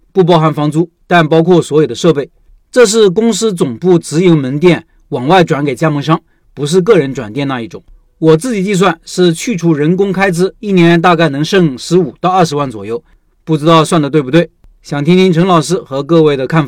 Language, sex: Chinese, male